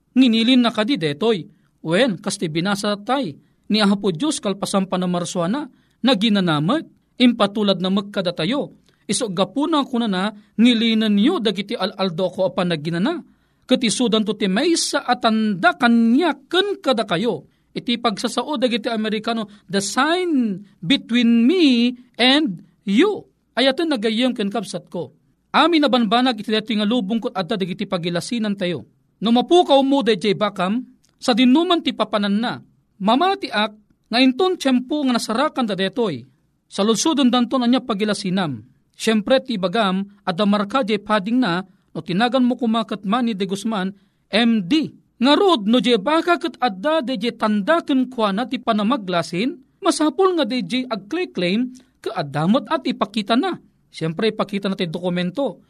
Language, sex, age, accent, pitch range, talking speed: Filipino, male, 40-59, native, 195-255 Hz, 140 wpm